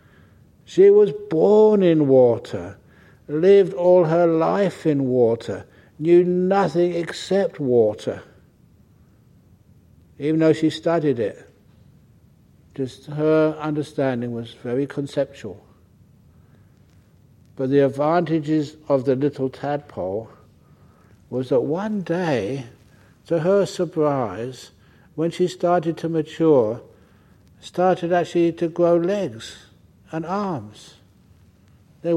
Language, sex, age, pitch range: English, male, 60-79, 125-175 Hz